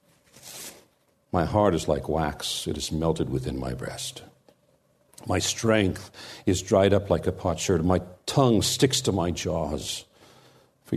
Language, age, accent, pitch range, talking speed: English, 60-79, American, 95-125 Hz, 150 wpm